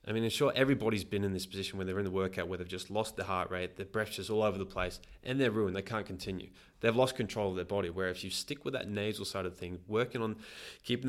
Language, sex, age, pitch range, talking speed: English, male, 20-39, 95-115 Hz, 285 wpm